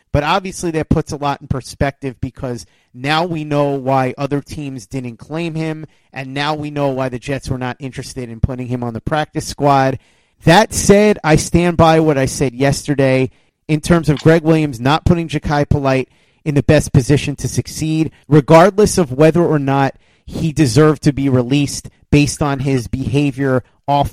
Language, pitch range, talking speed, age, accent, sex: English, 130-155 Hz, 185 wpm, 30-49, American, male